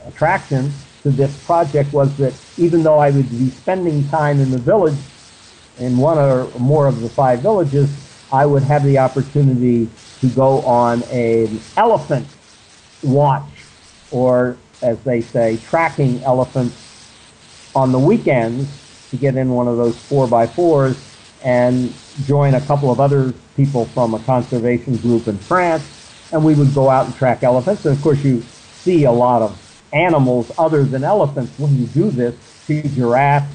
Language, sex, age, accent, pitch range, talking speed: English, male, 50-69, American, 120-140 Hz, 165 wpm